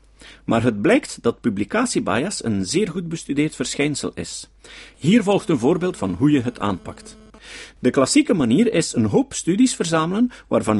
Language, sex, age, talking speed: Dutch, male, 50-69, 160 wpm